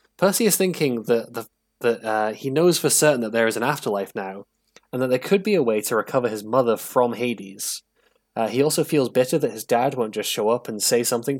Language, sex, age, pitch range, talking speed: English, male, 10-29, 110-145 Hz, 235 wpm